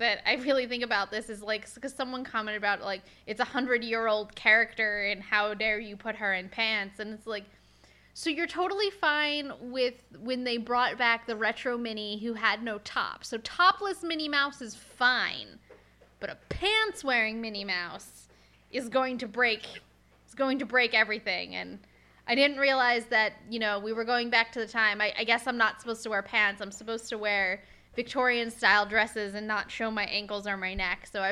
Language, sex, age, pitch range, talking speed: English, female, 10-29, 200-245 Hz, 195 wpm